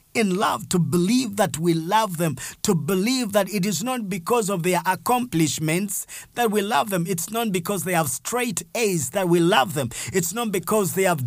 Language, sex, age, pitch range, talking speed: English, male, 50-69, 155-195 Hz, 200 wpm